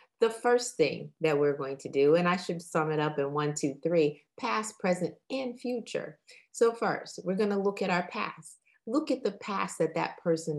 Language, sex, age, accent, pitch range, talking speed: English, female, 30-49, American, 140-185 Hz, 210 wpm